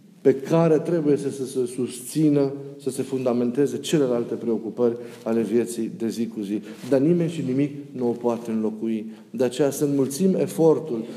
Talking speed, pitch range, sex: 160 wpm, 120-155 Hz, male